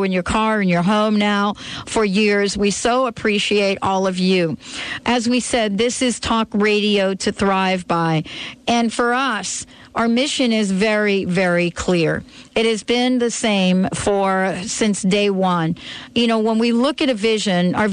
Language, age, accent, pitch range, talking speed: English, 50-69, American, 190-230 Hz, 175 wpm